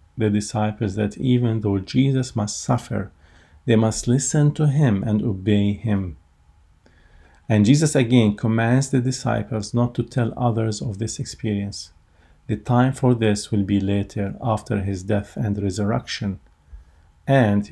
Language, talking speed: English, 140 wpm